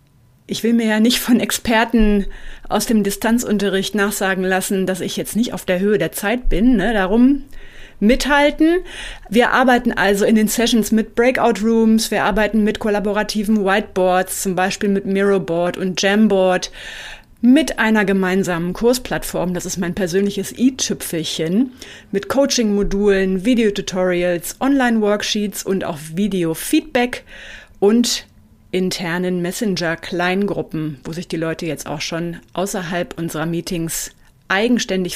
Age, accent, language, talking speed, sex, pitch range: 30-49, German, German, 125 wpm, female, 185-220 Hz